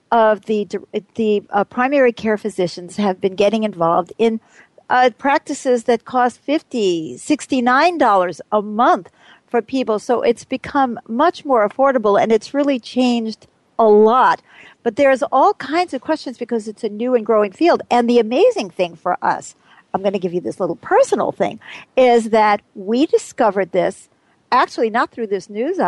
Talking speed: 165 wpm